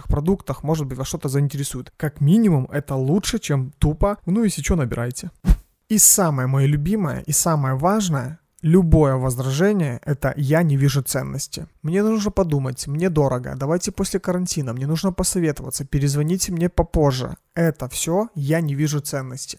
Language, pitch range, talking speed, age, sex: Russian, 140-175 Hz, 155 wpm, 30-49, male